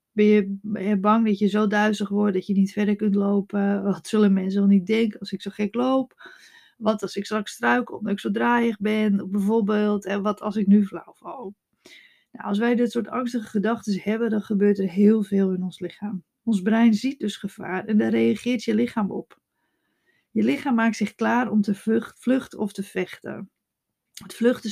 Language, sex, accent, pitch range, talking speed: Dutch, female, Dutch, 195-225 Hz, 205 wpm